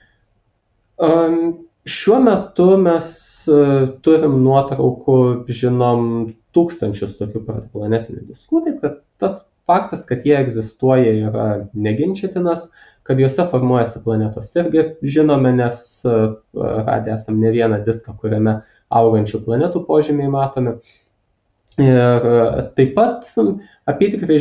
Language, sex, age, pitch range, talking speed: English, male, 20-39, 115-155 Hz, 95 wpm